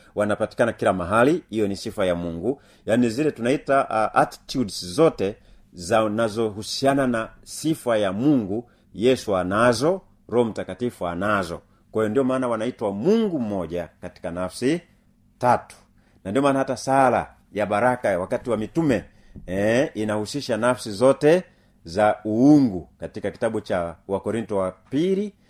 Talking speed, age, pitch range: 135 wpm, 40-59, 95-125 Hz